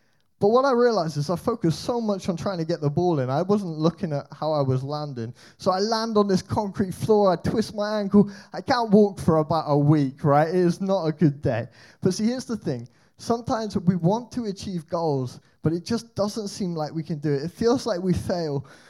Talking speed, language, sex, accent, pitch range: 240 wpm, English, male, British, 140-185 Hz